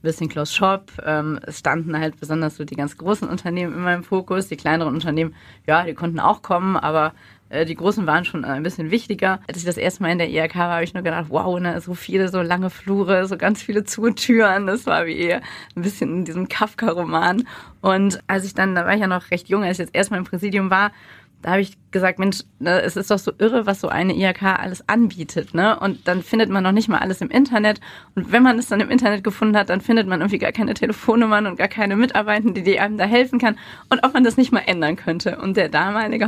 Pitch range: 175-210 Hz